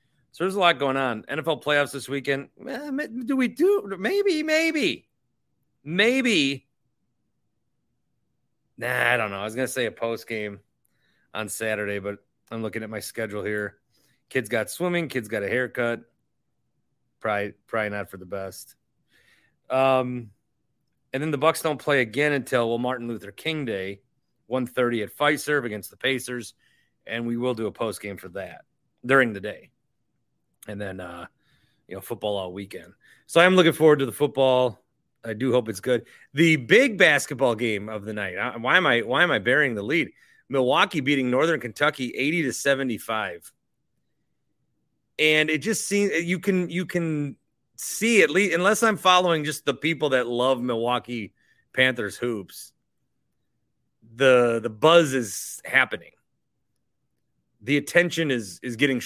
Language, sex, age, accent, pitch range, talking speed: English, male, 30-49, American, 110-155 Hz, 165 wpm